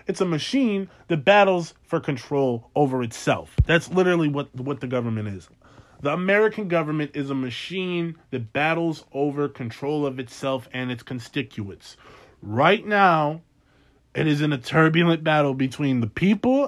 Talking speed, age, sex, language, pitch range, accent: 150 wpm, 20-39, male, English, 125-165 Hz, American